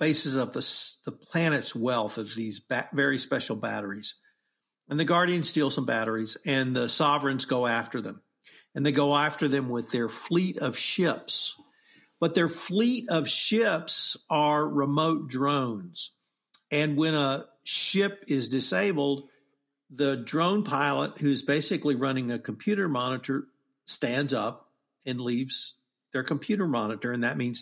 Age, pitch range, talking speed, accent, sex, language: 50-69, 130-155 Hz, 145 wpm, American, male, English